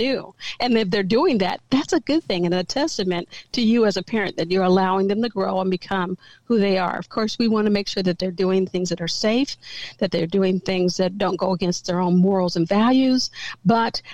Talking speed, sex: 240 wpm, female